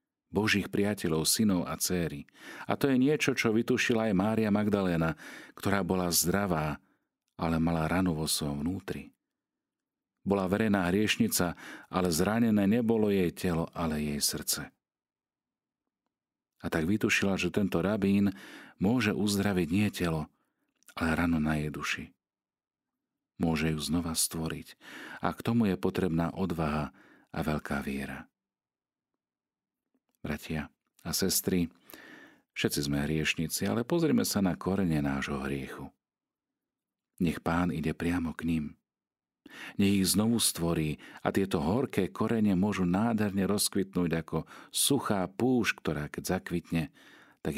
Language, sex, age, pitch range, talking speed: Slovak, male, 40-59, 80-100 Hz, 125 wpm